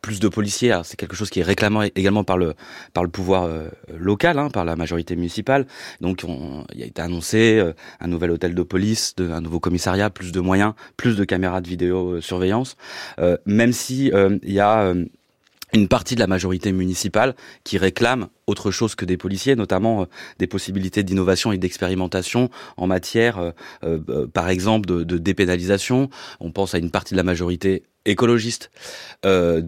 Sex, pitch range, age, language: male, 90-105 Hz, 20-39, French